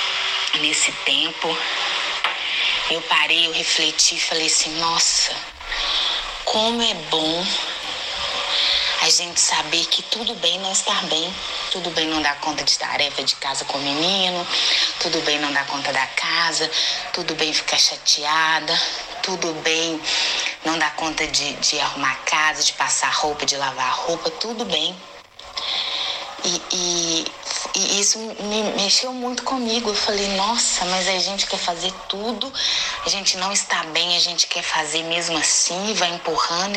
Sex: female